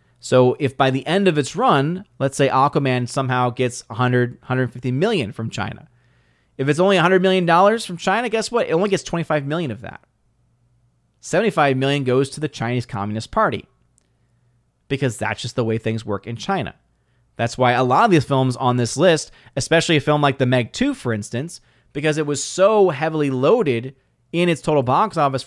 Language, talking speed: English, 190 wpm